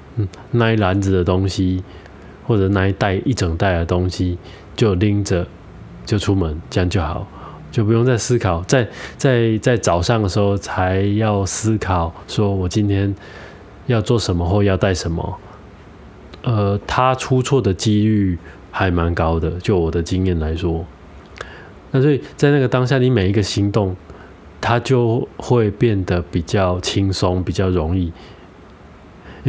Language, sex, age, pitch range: Chinese, male, 20-39, 90-110 Hz